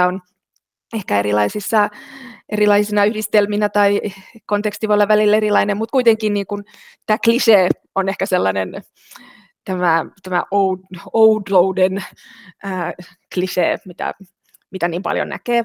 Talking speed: 105 wpm